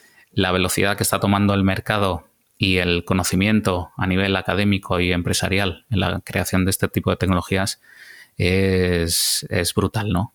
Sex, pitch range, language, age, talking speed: male, 95-110 Hz, Spanish, 30-49, 155 wpm